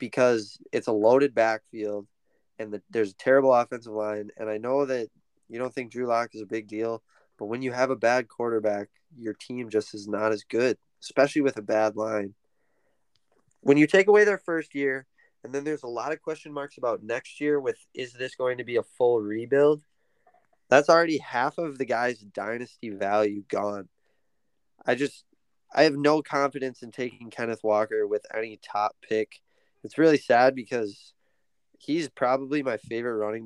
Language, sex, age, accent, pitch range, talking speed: English, male, 20-39, American, 110-135 Hz, 185 wpm